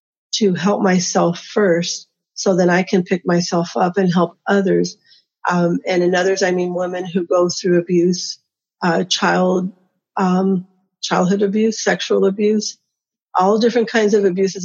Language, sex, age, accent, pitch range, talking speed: English, female, 40-59, American, 180-200 Hz, 150 wpm